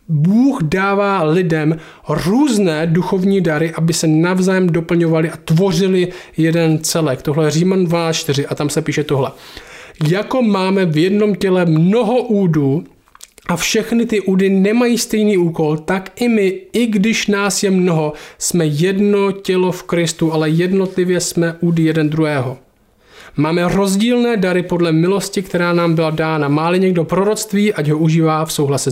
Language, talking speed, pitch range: Czech, 150 wpm, 160-195 Hz